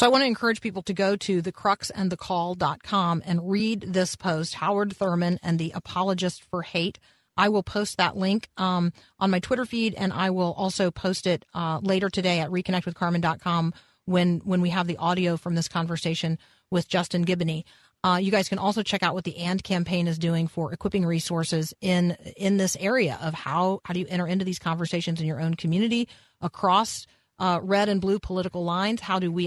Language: English